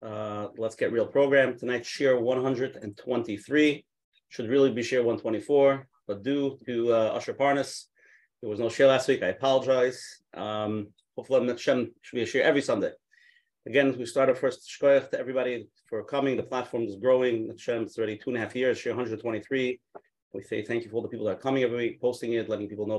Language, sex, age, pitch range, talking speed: English, male, 30-49, 110-135 Hz, 200 wpm